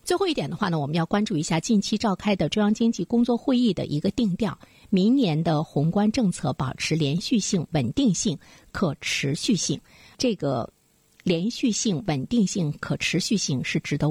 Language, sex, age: Chinese, female, 50-69